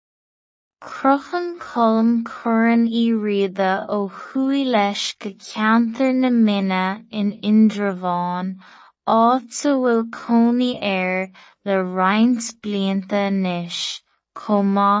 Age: 20-39